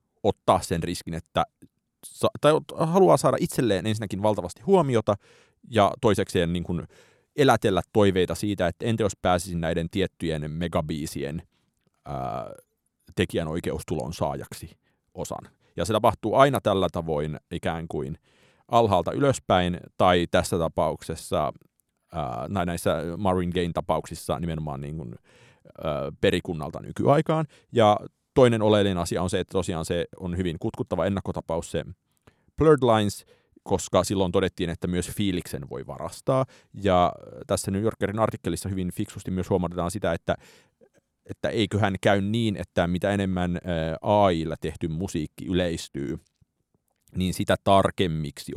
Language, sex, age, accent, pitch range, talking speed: Finnish, male, 30-49, native, 85-105 Hz, 115 wpm